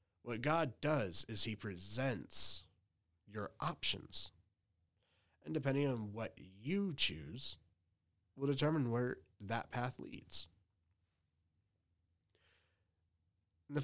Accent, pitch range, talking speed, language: American, 95-130 Hz, 90 wpm, English